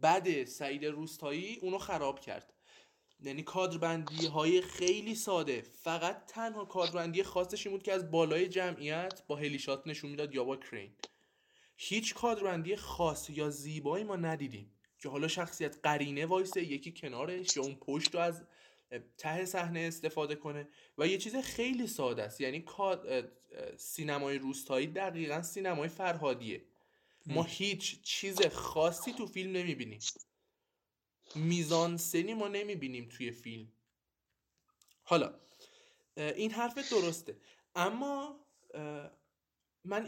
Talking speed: 120 wpm